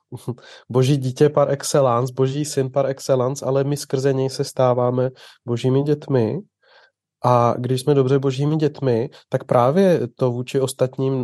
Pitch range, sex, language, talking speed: 120-135 Hz, male, Czech, 145 wpm